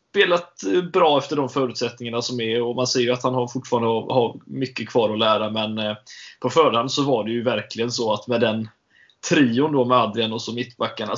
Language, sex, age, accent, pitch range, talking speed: Swedish, male, 20-39, native, 115-140 Hz, 210 wpm